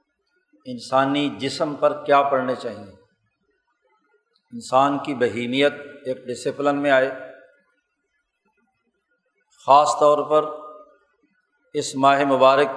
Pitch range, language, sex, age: 135-200 Hz, Urdu, male, 50-69